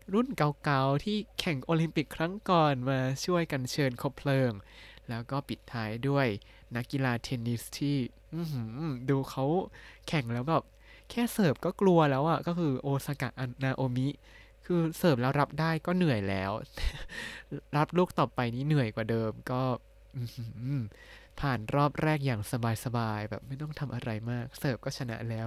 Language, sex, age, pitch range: Thai, male, 20-39, 115-145 Hz